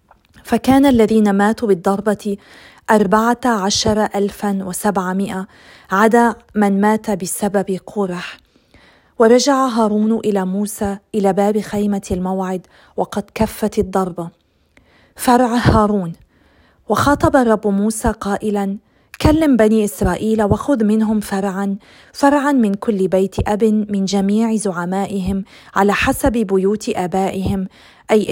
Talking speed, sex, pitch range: 105 wpm, female, 195-220 Hz